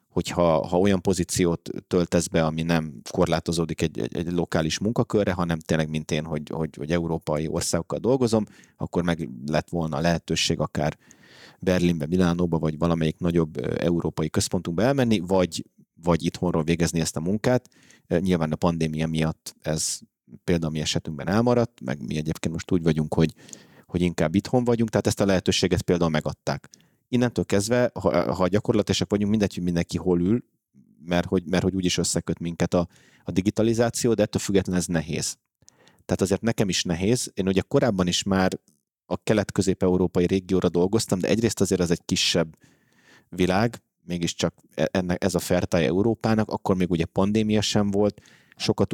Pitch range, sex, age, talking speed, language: 85-100 Hz, male, 30-49, 160 wpm, Hungarian